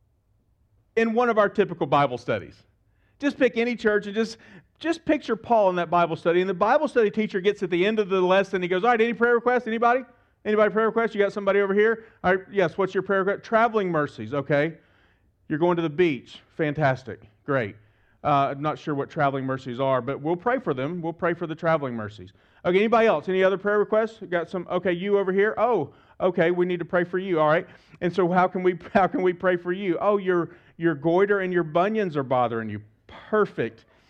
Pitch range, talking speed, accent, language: 145-205 Hz, 230 wpm, American, English